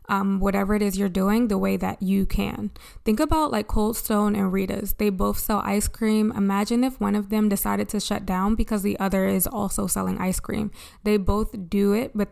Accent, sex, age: American, female, 20-39